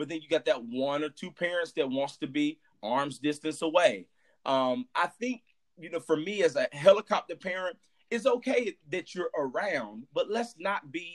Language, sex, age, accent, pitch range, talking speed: English, male, 30-49, American, 155-215 Hz, 195 wpm